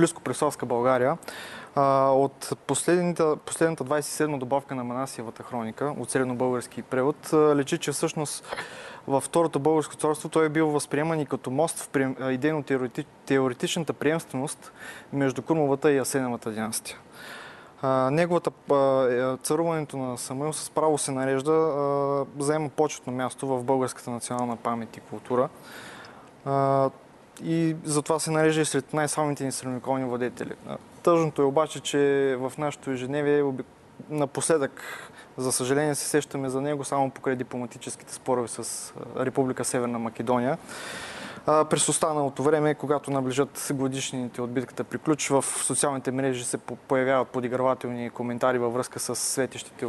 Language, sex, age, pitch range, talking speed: Bulgarian, male, 20-39, 130-150 Hz, 120 wpm